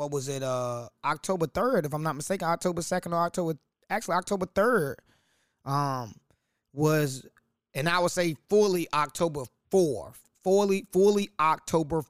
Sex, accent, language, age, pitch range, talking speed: male, American, English, 20-39, 130-165 Hz, 145 wpm